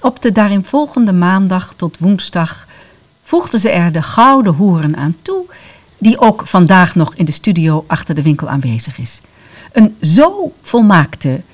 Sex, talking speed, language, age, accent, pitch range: female, 155 wpm, Dutch, 50-69, Dutch, 150-225 Hz